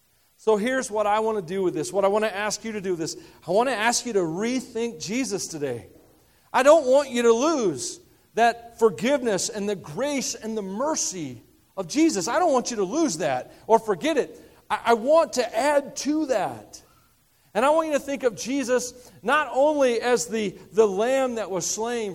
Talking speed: 210 wpm